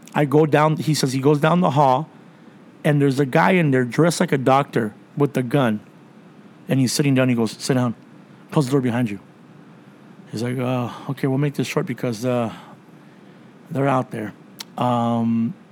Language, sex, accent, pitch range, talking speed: English, male, American, 125-155 Hz, 190 wpm